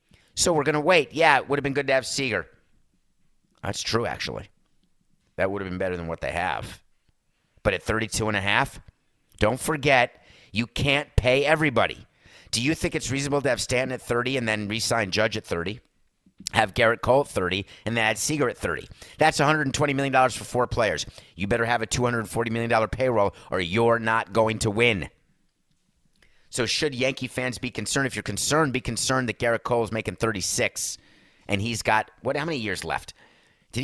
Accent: American